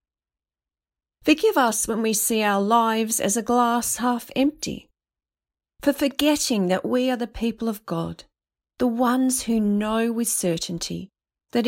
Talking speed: 145 wpm